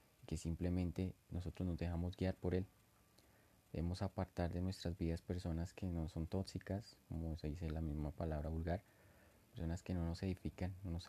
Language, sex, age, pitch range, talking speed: English, male, 30-49, 80-95 Hz, 175 wpm